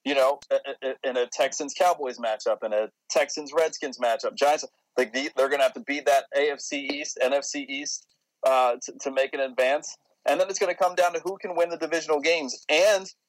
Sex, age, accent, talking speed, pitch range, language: male, 30-49, American, 195 wpm, 125-160 Hz, English